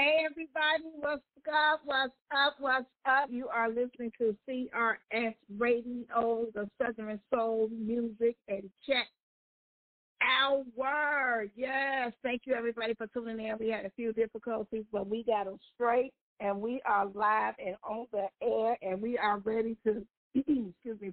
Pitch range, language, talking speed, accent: 220-260 Hz, English, 155 wpm, American